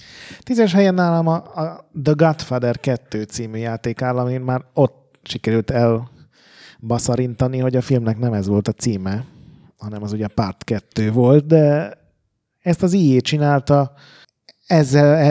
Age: 30-49